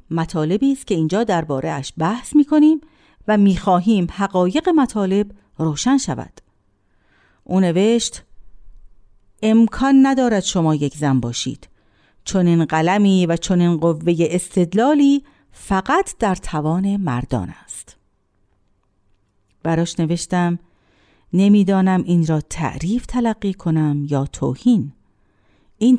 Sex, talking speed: female, 105 wpm